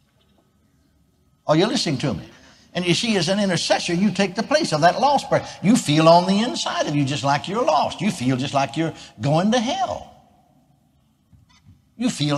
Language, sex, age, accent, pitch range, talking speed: English, male, 60-79, American, 140-205 Hz, 200 wpm